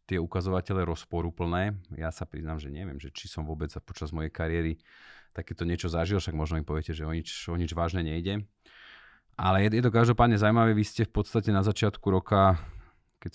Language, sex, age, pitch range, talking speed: Slovak, male, 30-49, 80-95 Hz, 200 wpm